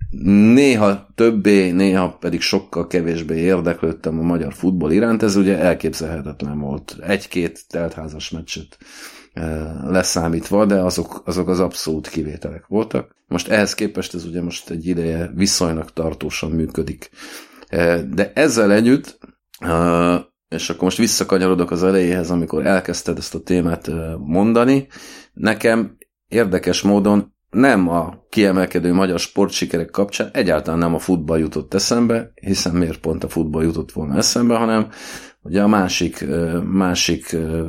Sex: male